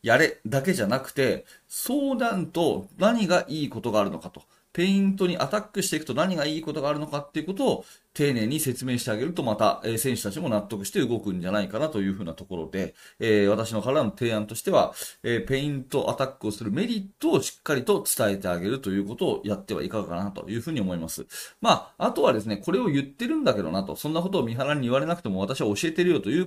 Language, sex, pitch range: Japanese, male, 105-160 Hz